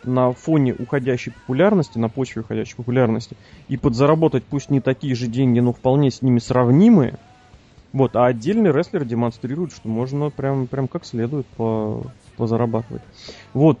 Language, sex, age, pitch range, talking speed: Russian, male, 30-49, 115-145 Hz, 145 wpm